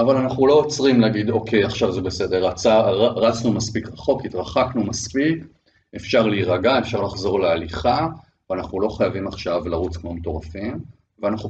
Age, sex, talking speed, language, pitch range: 40-59, male, 145 wpm, Hebrew, 90-115 Hz